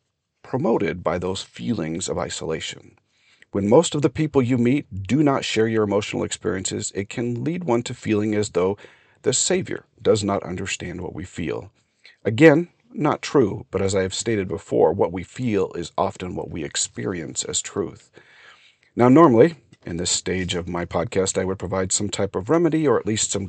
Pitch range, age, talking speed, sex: 95-125 Hz, 40-59, 185 wpm, male